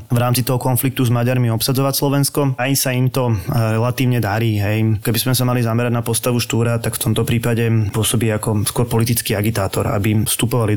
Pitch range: 115-130 Hz